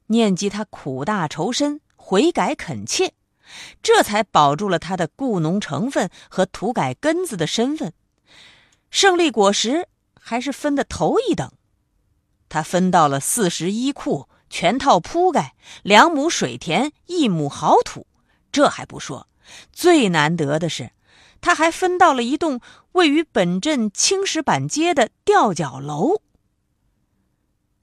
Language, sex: Chinese, female